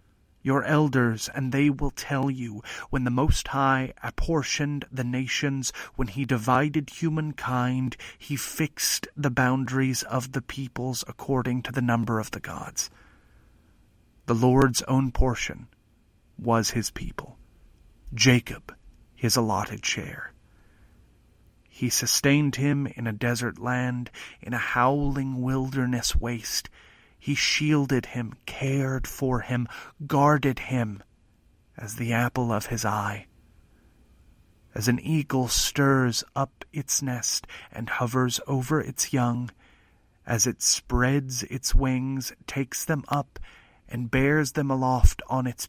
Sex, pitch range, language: male, 115-135 Hz, English